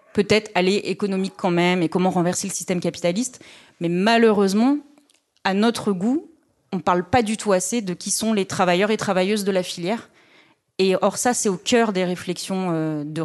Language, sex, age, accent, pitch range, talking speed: French, female, 30-49, French, 175-220 Hz, 190 wpm